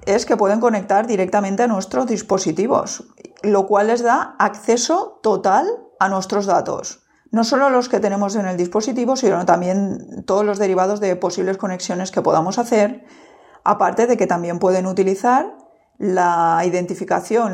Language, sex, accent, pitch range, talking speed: Spanish, female, Spanish, 185-230 Hz, 150 wpm